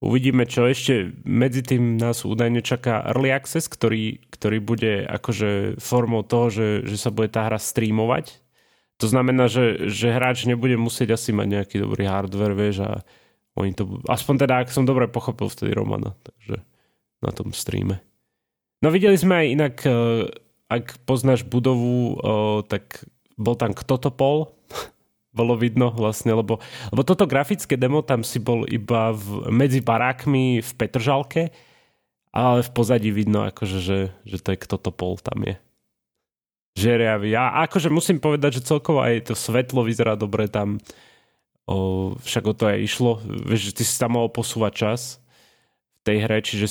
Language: Slovak